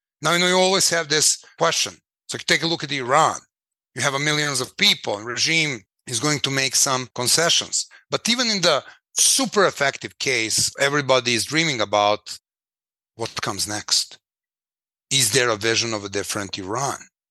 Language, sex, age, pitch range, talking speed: English, male, 30-49, 125-180 Hz, 175 wpm